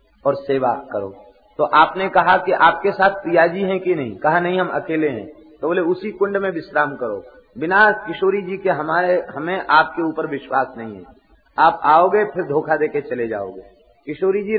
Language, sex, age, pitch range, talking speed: Hindi, male, 50-69, 140-195 Hz, 185 wpm